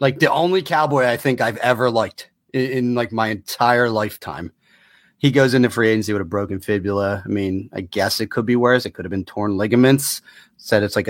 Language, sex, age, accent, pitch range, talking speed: English, male, 30-49, American, 110-130 Hz, 220 wpm